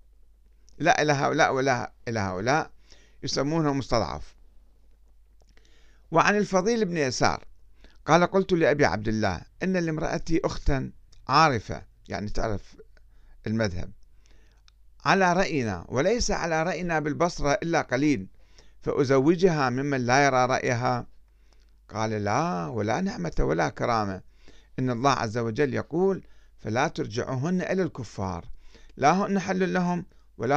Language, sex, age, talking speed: Arabic, male, 50-69, 115 wpm